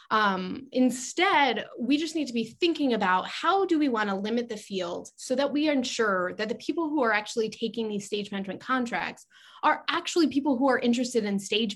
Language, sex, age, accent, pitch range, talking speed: English, female, 20-39, American, 200-255 Hz, 205 wpm